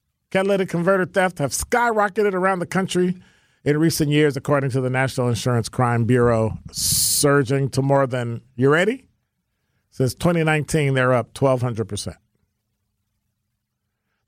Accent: American